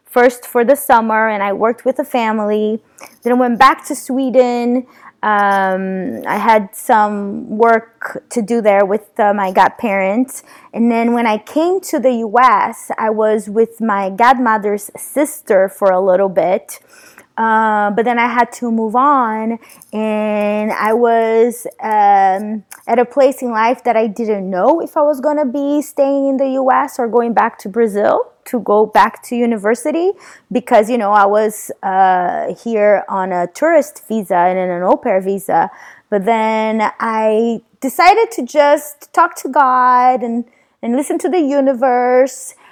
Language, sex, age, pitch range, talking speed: English, female, 20-39, 210-265 Hz, 165 wpm